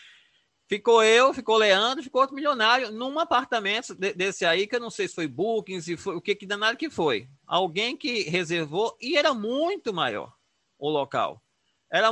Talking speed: 180 wpm